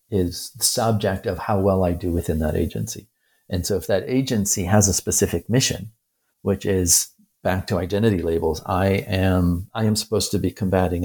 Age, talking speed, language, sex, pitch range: 50-69, 185 wpm, English, male, 90-105 Hz